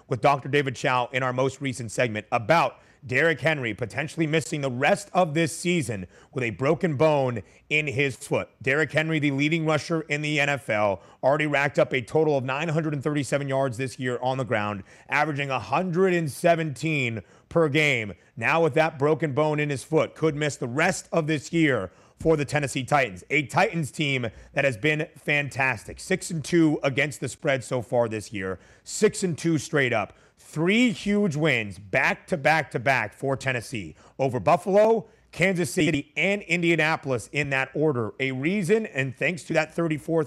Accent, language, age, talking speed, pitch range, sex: American, English, 30-49, 175 wpm, 130-165 Hz, male